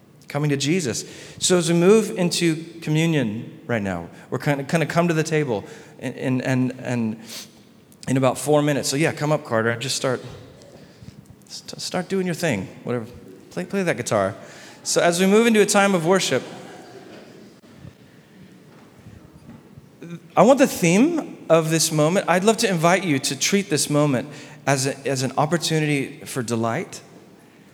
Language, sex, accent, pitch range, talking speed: English, male, American, 135-185 Hz, 165 wpm